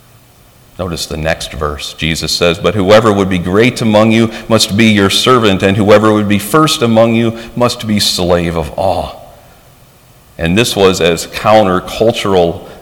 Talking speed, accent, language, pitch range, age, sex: 160 wpm, American, English, 95-120 Hz, 50-69, male